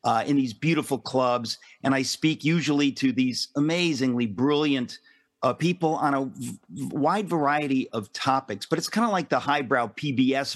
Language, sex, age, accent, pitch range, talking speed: English, male, 50-69, American, 125-155 Hz, 170 wpm